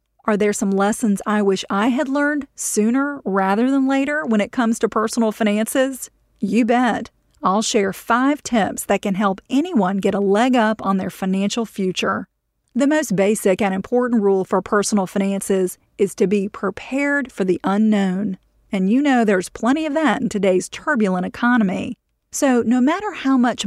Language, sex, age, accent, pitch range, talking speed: English, female, 40-59, American, 195-245 Hz, 175 wpm